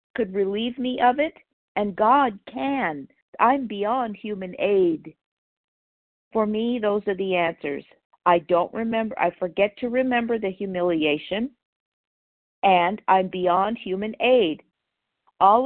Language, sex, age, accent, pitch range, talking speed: English, female, 50-69, American, 175-225 Hz, 125 wpm